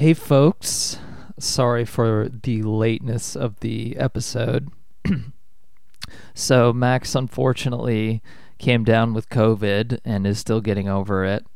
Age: 30-49